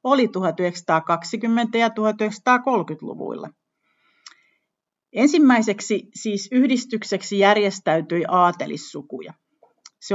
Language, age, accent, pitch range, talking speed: Finnish, 50-69, native, 180-230 Hz, 60 wpm